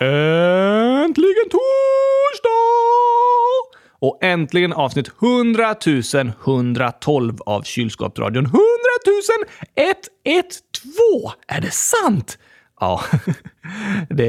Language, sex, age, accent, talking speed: Swedish, male, 30-49, native, 70 wpm